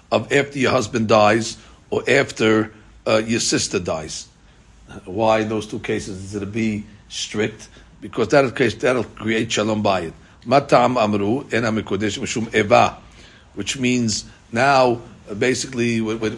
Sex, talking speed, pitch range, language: male, 140 wpm, 110-130 Hz, English